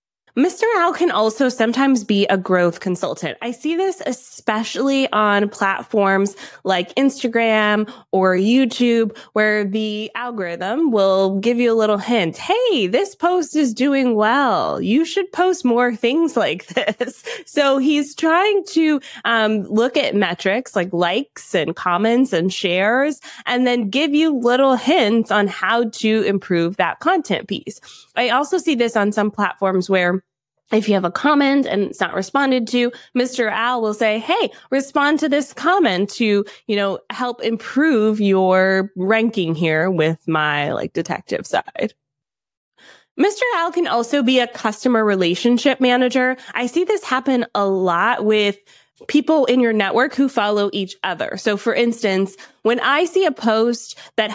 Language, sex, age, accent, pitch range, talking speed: English, female, 20-39, American, 200-275 Hz, 155 wpm